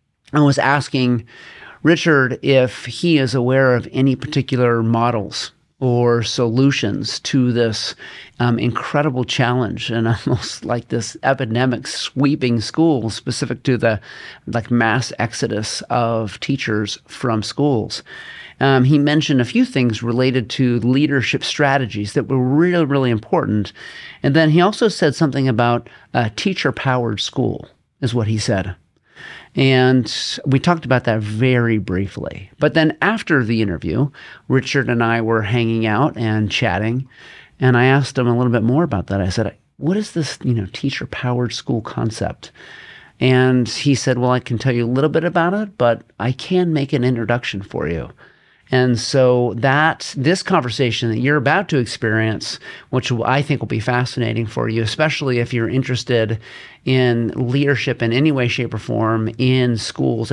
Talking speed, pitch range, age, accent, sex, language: 160 wpm, 115-135 Hz, 40-59, American, male, English